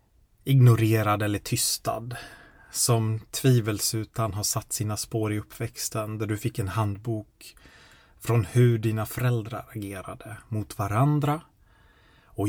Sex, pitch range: male, 105-125 Hz